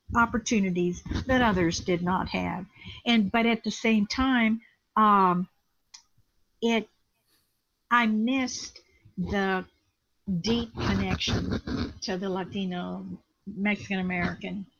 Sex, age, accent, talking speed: female, 50-69, American, 95 wpm